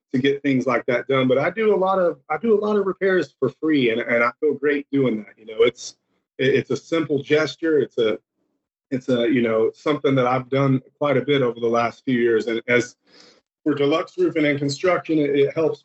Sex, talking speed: male, 230 wpm